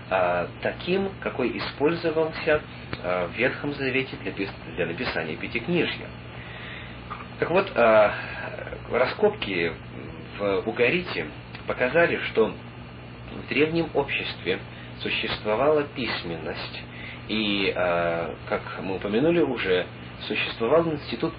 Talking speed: 80 wpm